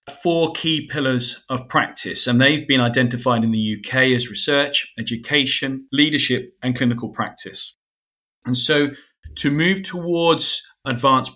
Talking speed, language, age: 130 wpm, English, 40-59